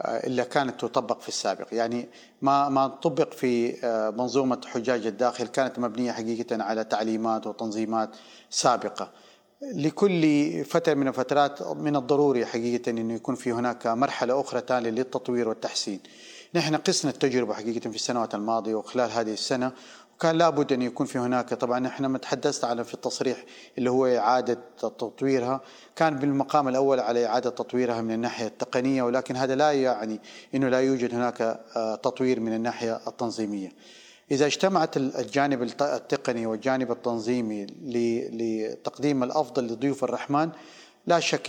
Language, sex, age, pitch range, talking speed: Arabic, male, 40-59, 120-140 Hz, 140 wpm